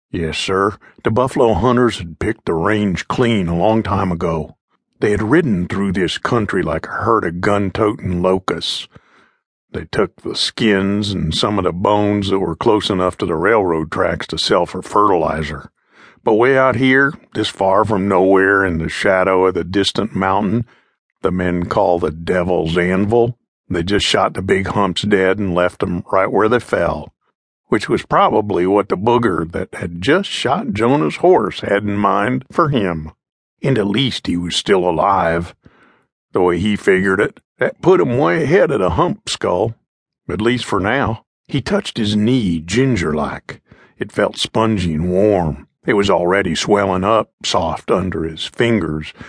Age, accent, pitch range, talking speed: 50-69, American, 90-110 Hz, 175 wpm